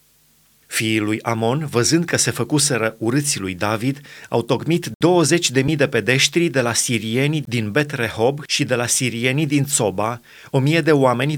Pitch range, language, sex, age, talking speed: 115-145 Hz, Romanian, male, 30-49, 165 wpm